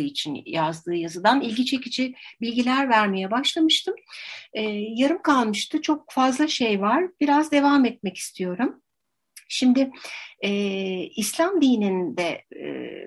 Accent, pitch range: native, 195-260 Hz